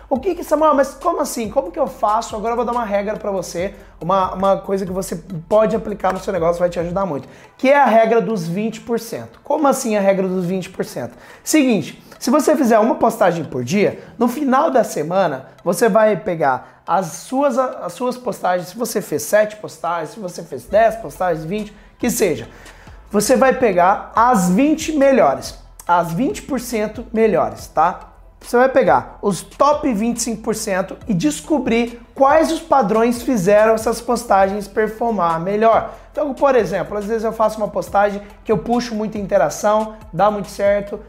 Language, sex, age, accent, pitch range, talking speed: Portuguese, male, 20-39, Brazilian, 195-245 Hz, 175 wpm